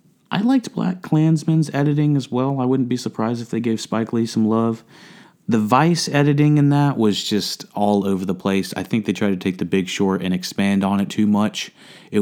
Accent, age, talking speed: American, 30-49, 220 wpm